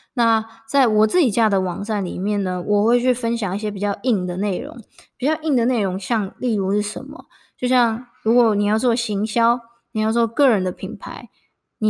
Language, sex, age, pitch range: Chinese, female, 20-39, 200-240 Hz